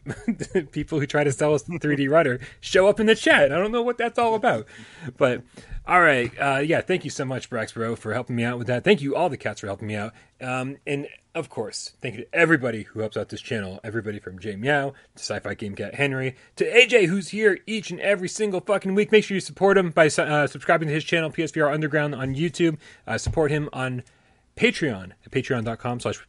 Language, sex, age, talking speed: English, male, 30-49, 230 wpm